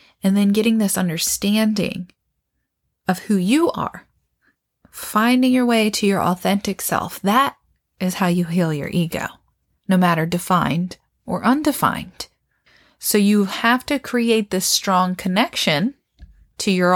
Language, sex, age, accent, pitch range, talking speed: English, female, 20-39, American, 170-210 Hz, 135 wpm